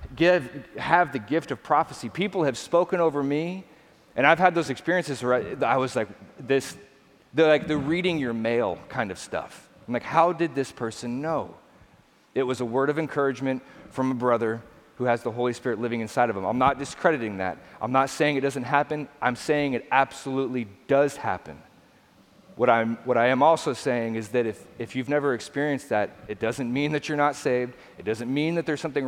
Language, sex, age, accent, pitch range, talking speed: English, male, 40-59, American, 120-150 Hz, 205 wpm